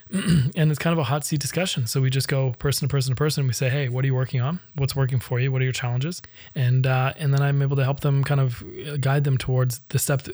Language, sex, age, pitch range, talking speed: English, male, 20-39, 125-140 Hz, 295 wpm